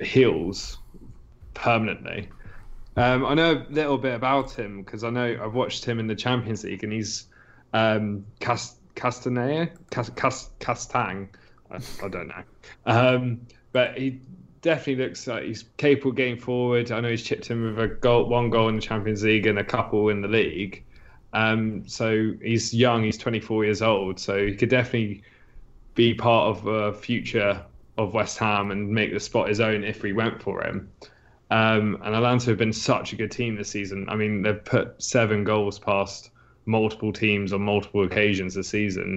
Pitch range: 105-120 Hz